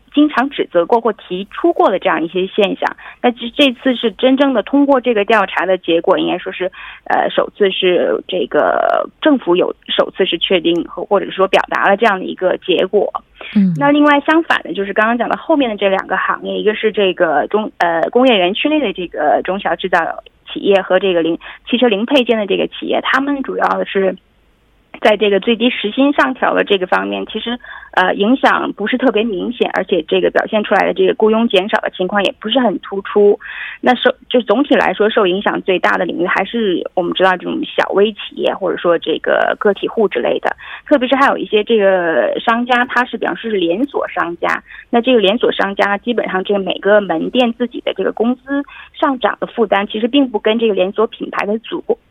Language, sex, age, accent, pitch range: Korean, female, 20-39, Chinese, 195-265 Hz